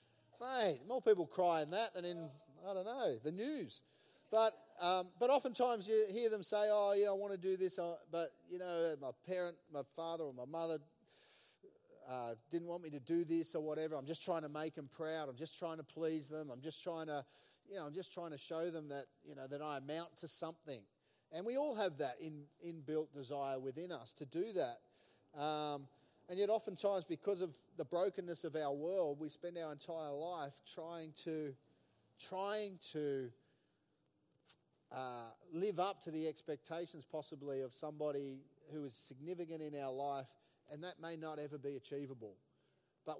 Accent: Australian